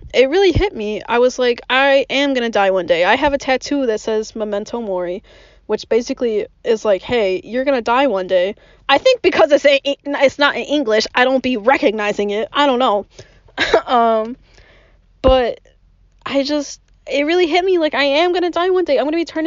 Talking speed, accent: 215 wpm, American